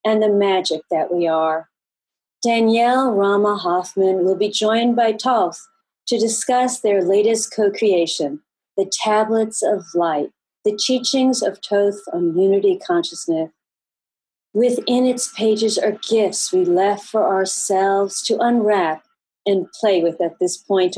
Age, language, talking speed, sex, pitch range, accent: 40-59, English, 135 wpm, female, 190-240 Hz, American